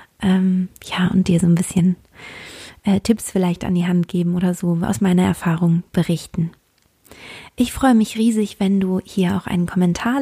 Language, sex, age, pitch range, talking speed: German, female, 20-39, 185-215 Hz, 170 wpm